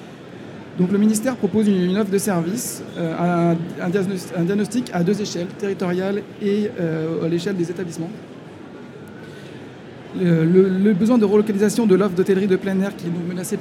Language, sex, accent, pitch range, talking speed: French, male, French, 175-205 Hz, 170 wpm